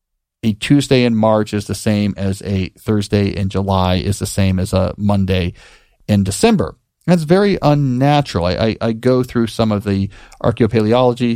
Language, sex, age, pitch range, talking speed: English, male, 40-59, 105-150 Hz, 165 wpm